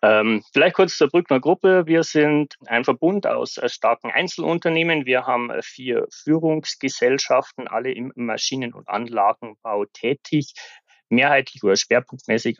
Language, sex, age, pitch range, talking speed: German, male, 30-49, 110-140 Hz, 125 wpm